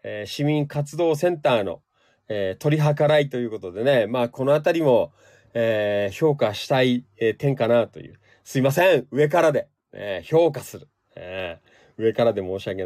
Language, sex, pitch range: Japanese, male, 115-155 Hz